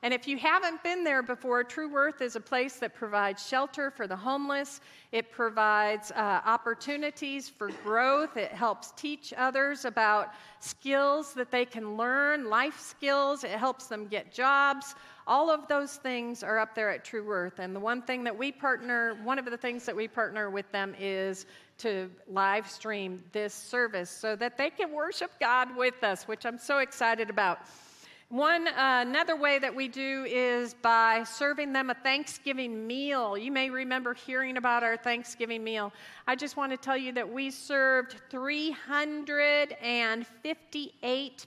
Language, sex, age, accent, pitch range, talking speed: English, female, 50-69, American, 225-280 Hz, 170 wpm